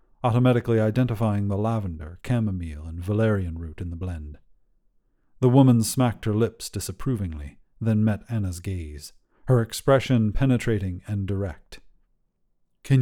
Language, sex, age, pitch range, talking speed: English, male, 40-59, 95-125 Hz, 125 wpm